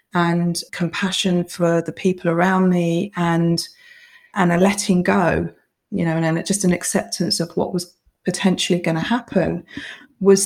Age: 30-49